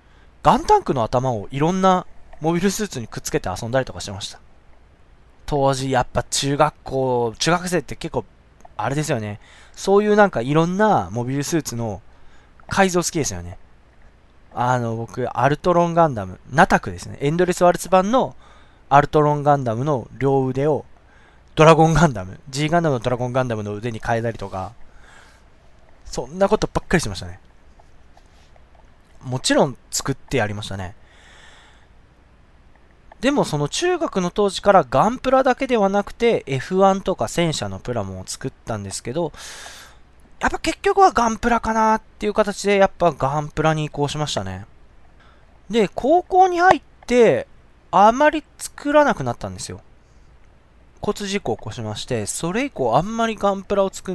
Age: 20-39